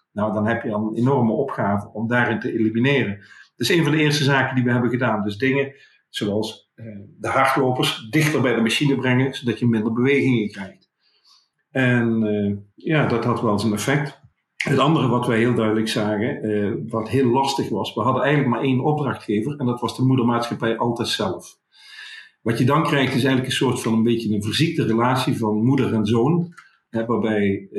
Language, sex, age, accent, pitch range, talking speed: Dutch, male, 50-69, Dutch, 110-135 Hz, 195 wpm